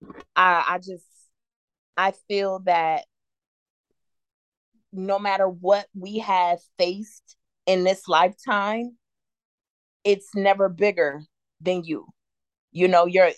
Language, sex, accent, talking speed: English, female, American, 105 wpm